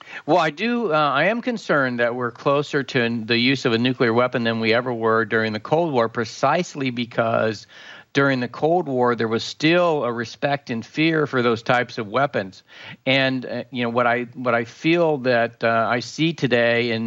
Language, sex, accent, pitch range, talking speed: English, male, American, 120-140 Hz, 205 wpm